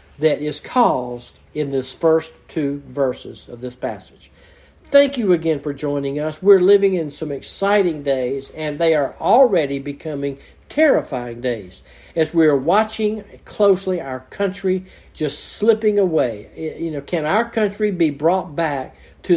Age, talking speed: 60-79, 150 wpm